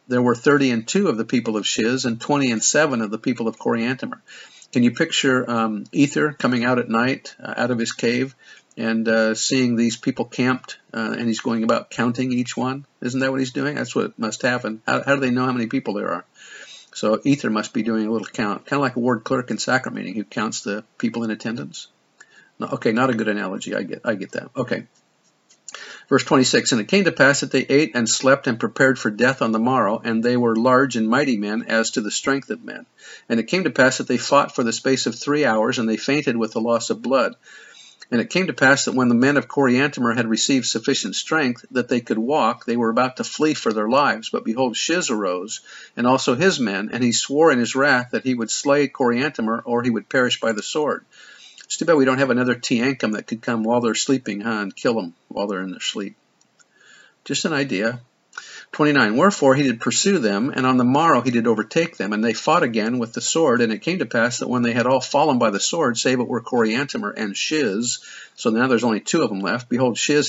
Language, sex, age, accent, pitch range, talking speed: English, male, 50-69, American, 115-135 Hz, 240 wpm